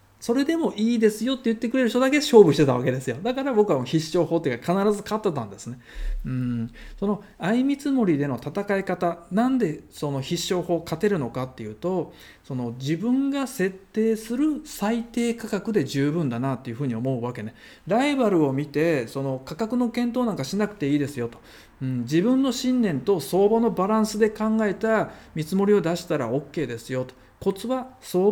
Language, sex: Japanese, male